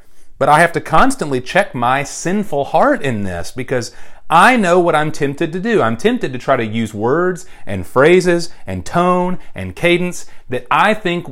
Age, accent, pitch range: 40-59, American, 115-175 Hz